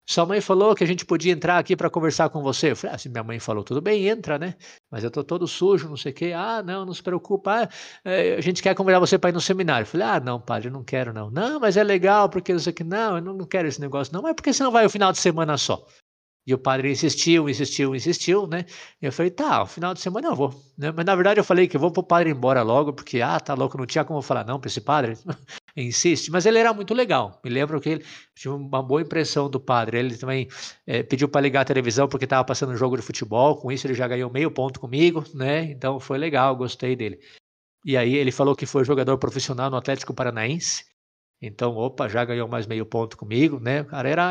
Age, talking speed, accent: 50-69, 255 wpm, Brazilian